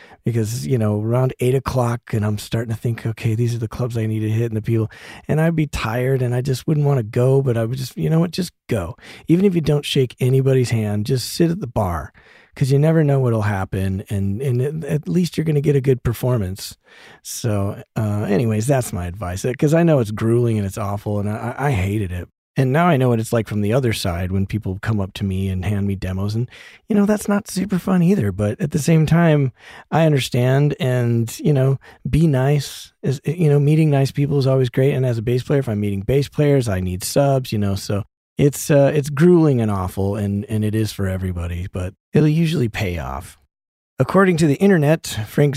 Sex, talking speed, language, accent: male, 235 wpm, English, American